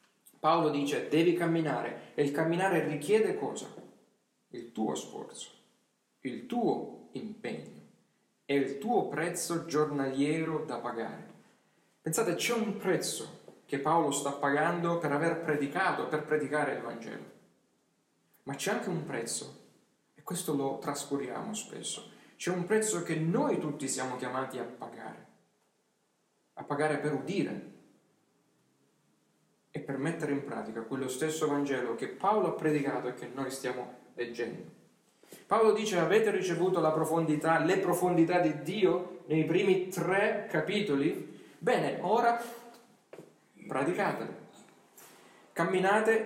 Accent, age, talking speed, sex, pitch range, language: native, 40-59, 125 wpm, male, 140-185 Hz, Italian